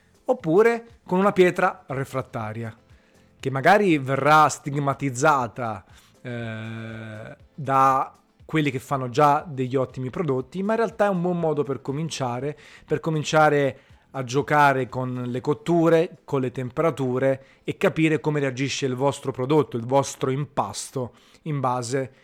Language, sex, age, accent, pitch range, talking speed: Italian, male, 30-49, native, 120-145 Hz, 130 wpm